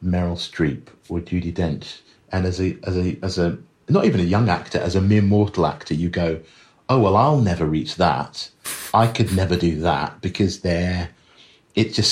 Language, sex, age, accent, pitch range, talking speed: English, male, 40-59, British, 90-110 Hz, 195 wpm